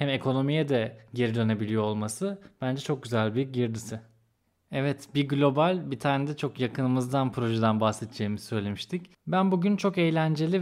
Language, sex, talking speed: Turkish, male, 145 wpm